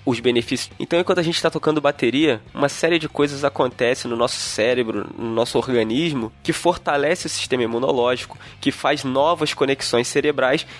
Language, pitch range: Portuguese, 120-150 Hz